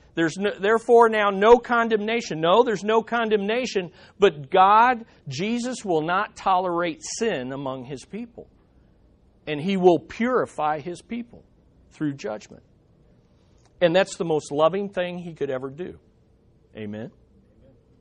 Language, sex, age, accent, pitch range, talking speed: English, male, 50-69, American, 130-195 Hz, 125 wpm